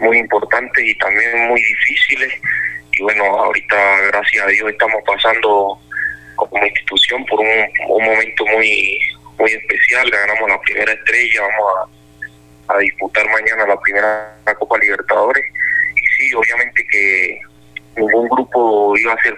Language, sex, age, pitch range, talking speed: Spanish, male, 30-49, 100-130 Hz, 140 wpm